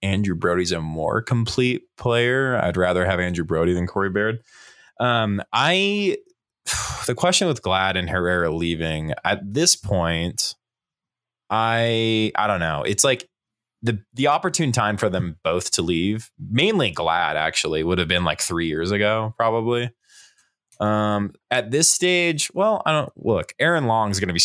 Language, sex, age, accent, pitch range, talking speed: English, male, 20-39, American, 90-120 Hz, 160 wpm